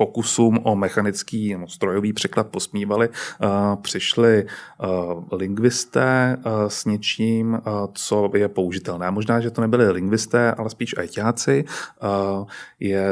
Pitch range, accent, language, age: 100-115 Hz, native, Czech, 30-49